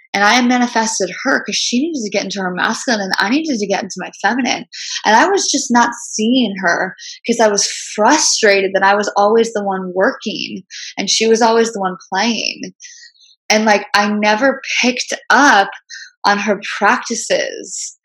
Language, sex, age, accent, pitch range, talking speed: English, female, 10-29, American, 200-260 Hz, 180 wpm